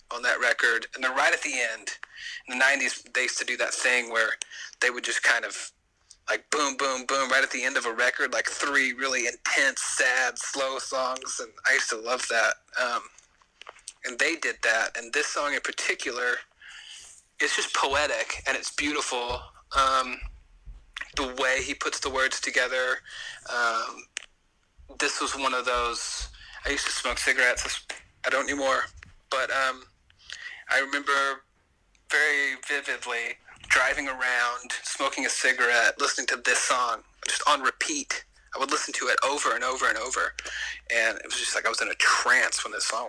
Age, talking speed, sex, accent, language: 30-49, 175 wpm, male, American, English